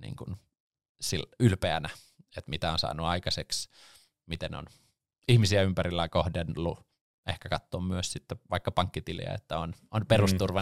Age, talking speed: 20-39, 130 wpm